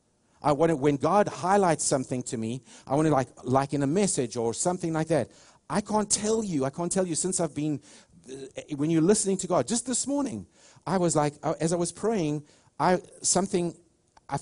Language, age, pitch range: English, 50-69, 125-170 Hz